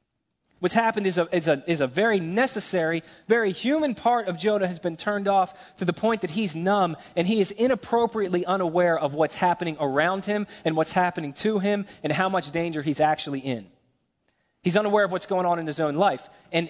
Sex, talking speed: male, 200 wpm